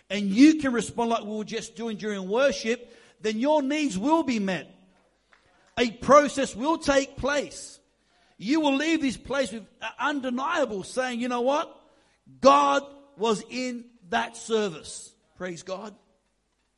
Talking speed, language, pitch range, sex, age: 145 wpm, English, 210-250 Hz, male, 50-69